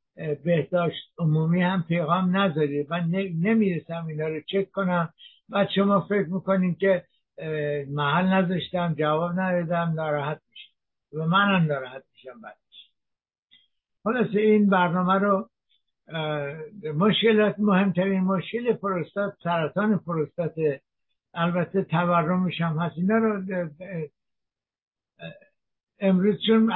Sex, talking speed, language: male, 95 wpm, Persian